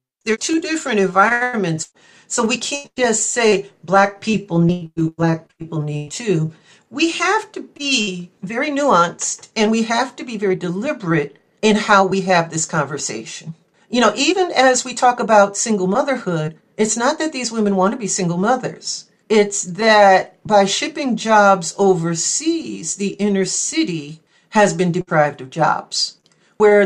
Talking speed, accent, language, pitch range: 155 wpm, American, English, 170-225 Hz